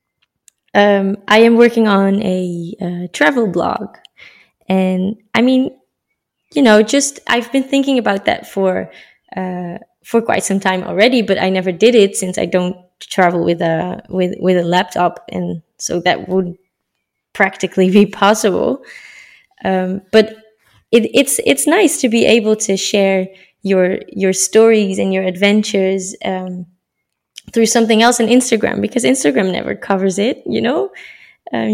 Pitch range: 190-235 Hz